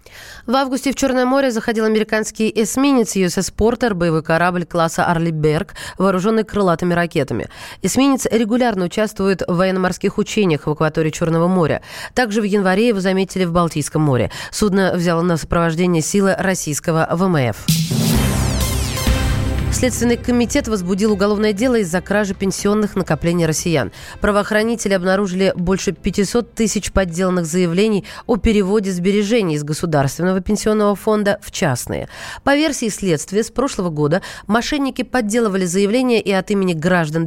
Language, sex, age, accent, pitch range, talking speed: Russian, female, 20-39, native, 175-220 Hz, 130 wpm